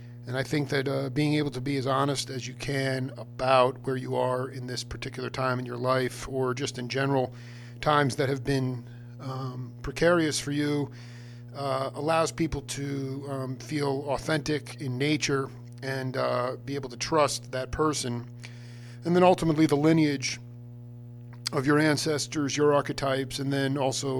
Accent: American